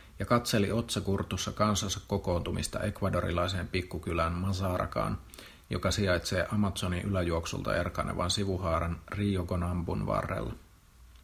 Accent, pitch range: native, 85-105 Hz